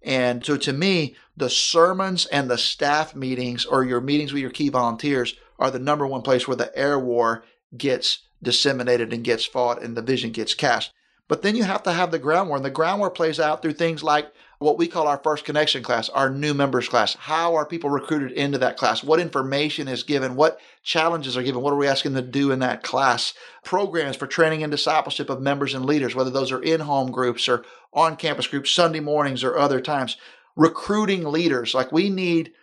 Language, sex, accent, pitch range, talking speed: English, male, American, 130-160 Hz, 215 wpm